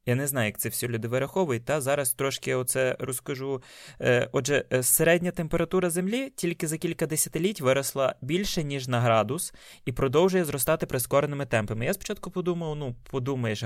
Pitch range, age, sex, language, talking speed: 130-180 Hz, 20-39, male, Ukrainian, 165 wpm